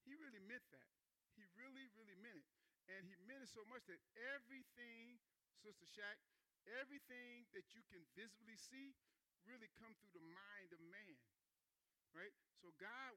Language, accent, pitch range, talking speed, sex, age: English, American, 175-235 Hz, 160 wpm, male, 50-69